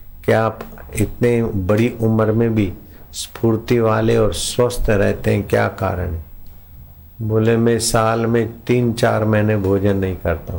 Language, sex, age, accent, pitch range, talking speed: Hindi, male, 50-69, native, 80-110 Hz, 145 wpm